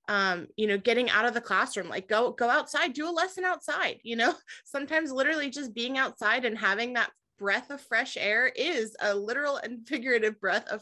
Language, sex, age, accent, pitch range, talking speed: English, female, 20-39, American, 210-255 Hz, 205 wpm